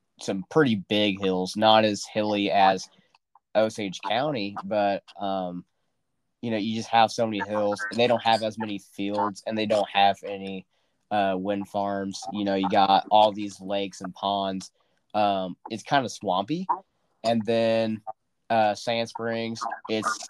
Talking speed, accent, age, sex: 165 wpm, American, 20-39, male